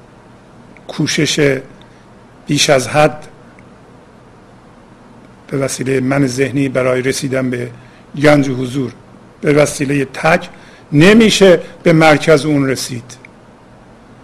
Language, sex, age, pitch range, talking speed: Persian, male, 50-69, 130-155 Hz, 90 wpm